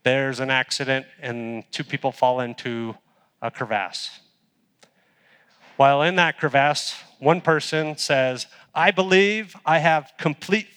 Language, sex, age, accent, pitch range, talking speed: English, male, 40-59, American, 130-175 Hz, 125 wpm